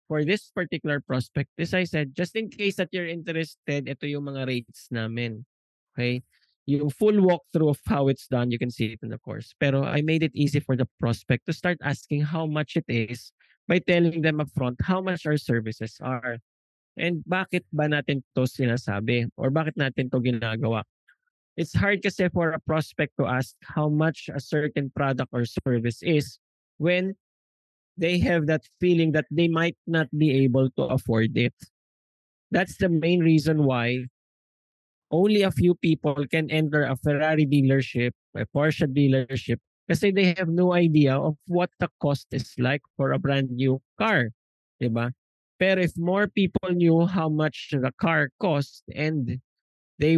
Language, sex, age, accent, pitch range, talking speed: English, male, 20-39, Filipino, 130-165 Hz, 170 wpm